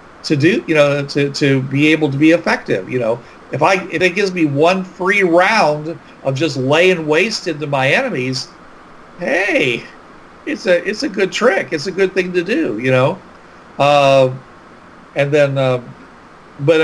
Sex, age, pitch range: male, 50-69, 150-220 Hz